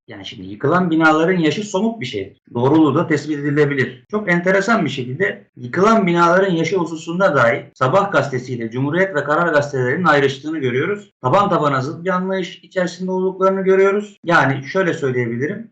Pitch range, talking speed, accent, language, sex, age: 135-175 Hz, 155 wpm, native, Turkish, male, 50-69